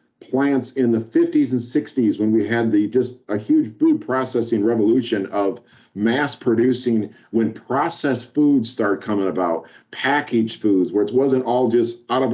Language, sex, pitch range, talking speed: English, male, 115-140 Hz, 165 wpm